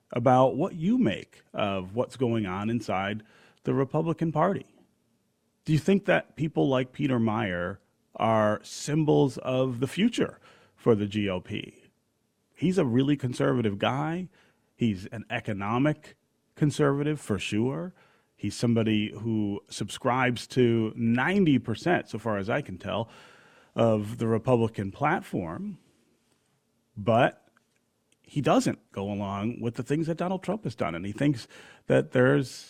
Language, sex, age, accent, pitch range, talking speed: English, male, 30-49, American, 110-145 Hz, 135 wpm